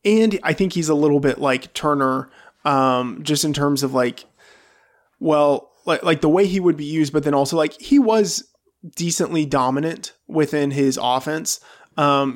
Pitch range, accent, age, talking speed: 130-160 Hz, American, 20-39, 175 wpm